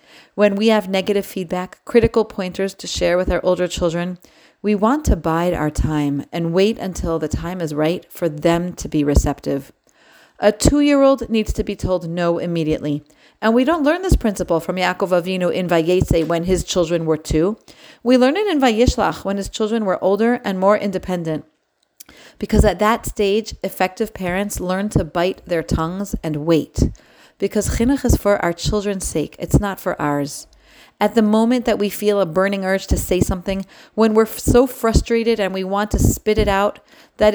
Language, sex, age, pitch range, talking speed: English, female, 40-59, 165-210 Hz, 185 wpm